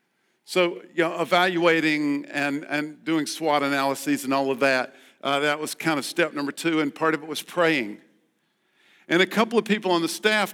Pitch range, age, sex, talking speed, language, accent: 140-175 Hz, 50-69, male, 190 wpm, English, American